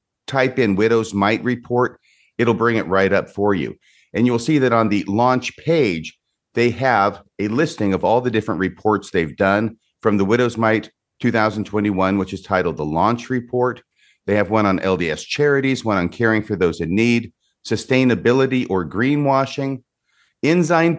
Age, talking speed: 50-69, 170 wpm